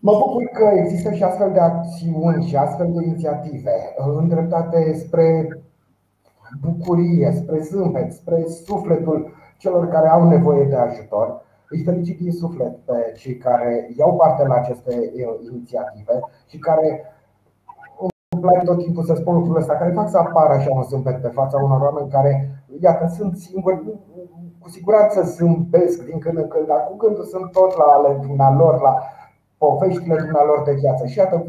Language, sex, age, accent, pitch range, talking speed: Romanian, male, 30-49, native, 135-170 Hz, 155 wpm